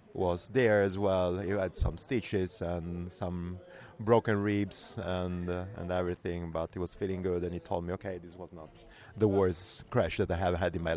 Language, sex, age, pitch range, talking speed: English, male, 30-49, 90-110 Hz, 210 wpm